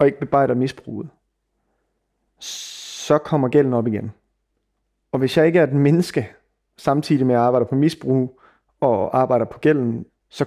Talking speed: 155 wpm